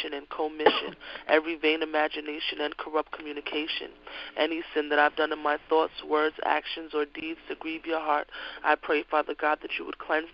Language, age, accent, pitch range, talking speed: English, 20-39, American, 150-160 Hz, 185 wpm